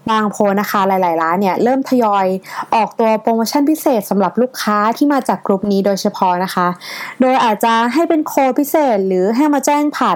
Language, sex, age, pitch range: Thai, female, 20-39, 200-270 Hz